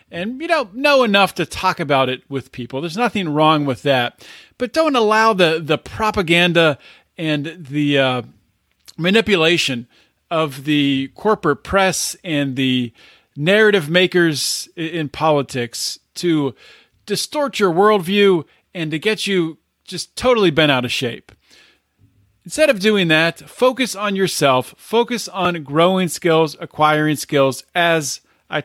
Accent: American